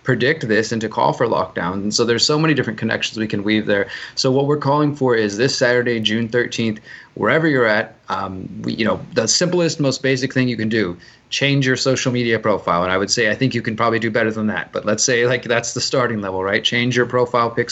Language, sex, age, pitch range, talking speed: English, male, 20-39, 110-125 Hz, 245 wpm